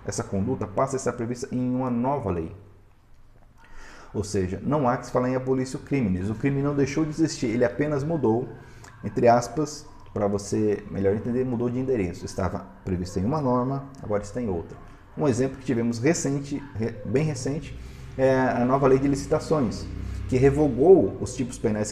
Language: Portuguese